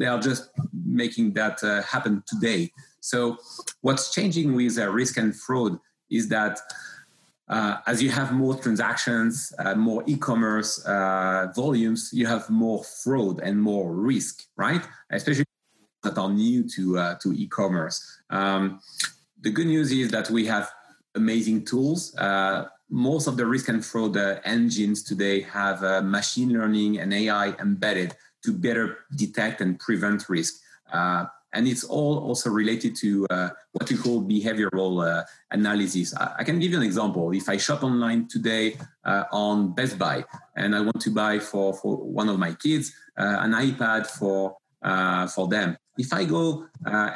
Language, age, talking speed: English, 30-49, 160 wpm